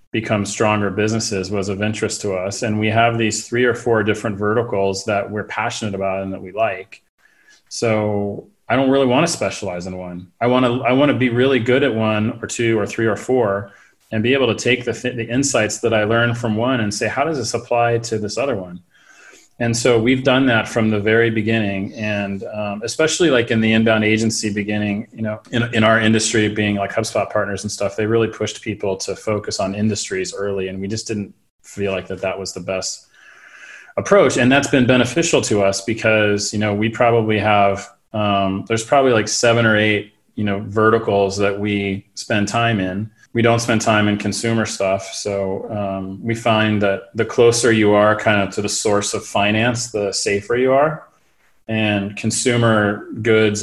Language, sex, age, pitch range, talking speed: English, male, 30-49, 100-115 Hz, 205 wpm